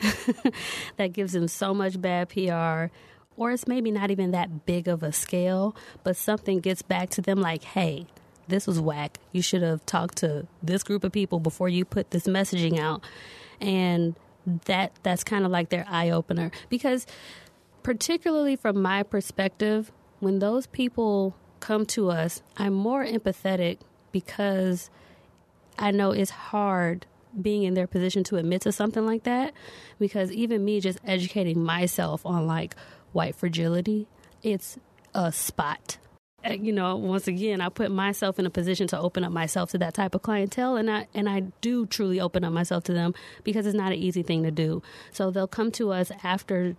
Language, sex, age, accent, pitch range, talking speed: English, female, 20-39, American, 175-205 Hz, 175 wpm